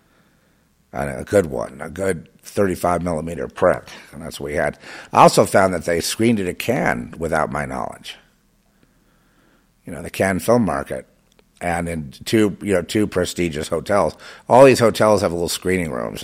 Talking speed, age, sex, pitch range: 175 wpm, 50-69, male, 85-110 Hz